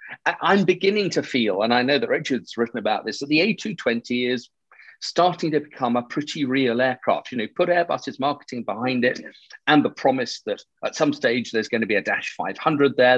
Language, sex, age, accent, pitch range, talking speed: English, male, 40-59, British, 120-165 Hz, 205 wpm